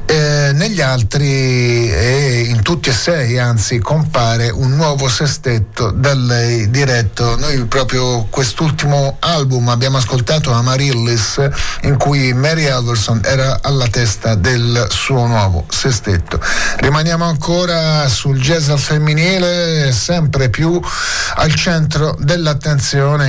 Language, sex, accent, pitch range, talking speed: Italian, male, native, 120-150 Hz, 115 wpm